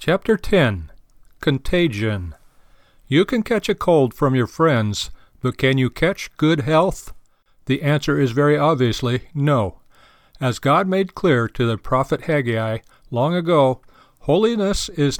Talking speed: 140 wpm